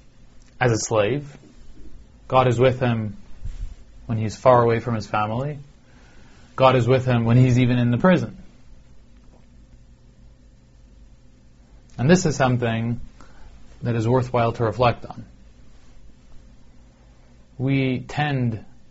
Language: English